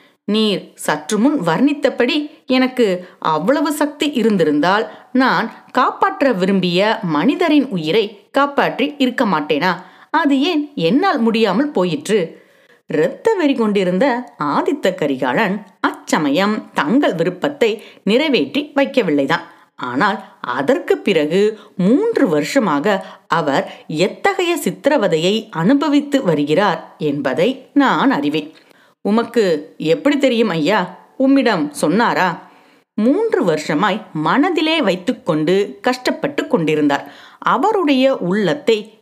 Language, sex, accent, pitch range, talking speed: Tamil, female, native, 200-280 Hz, 80 wpm